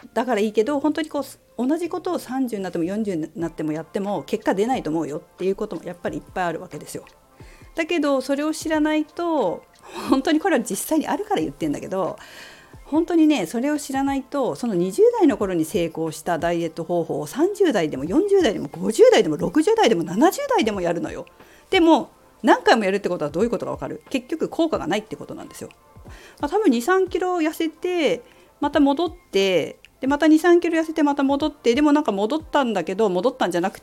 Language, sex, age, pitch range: Japanese, female, 40-59, 230-335 Hz